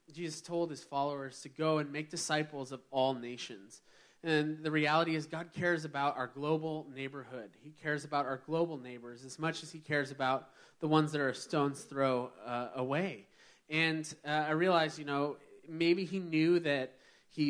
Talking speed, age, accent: 185 wpm, 20-39, American